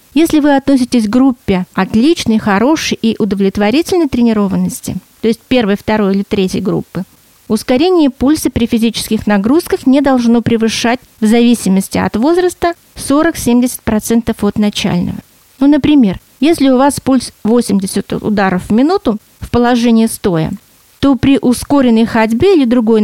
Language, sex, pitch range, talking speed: Russian, female, 210-265 Hz, 135 wpm